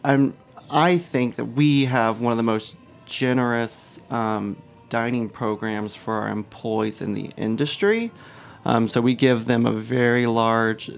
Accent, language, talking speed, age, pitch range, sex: American, English, 155 wpm, 30-49, 110-130 Hz, male